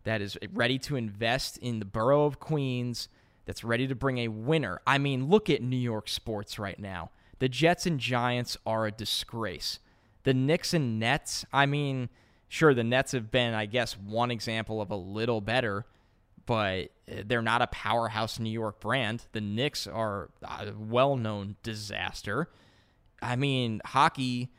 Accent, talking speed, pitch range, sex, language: American, 165 wpm, 110-140 Hz, male, English